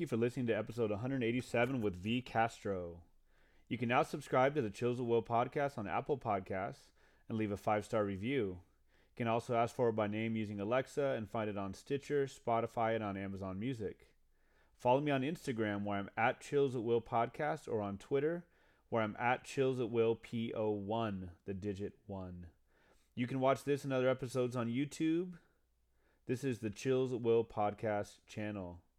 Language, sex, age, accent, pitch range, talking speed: English, male, 30-49, American, 105-135 Hz, 185 wpm